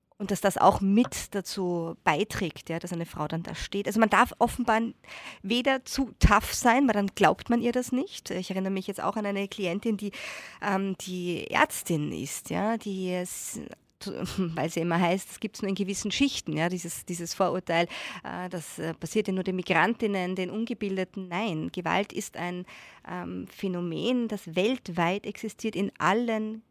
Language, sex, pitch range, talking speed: German, female, 180-220 Hz, 180 wpm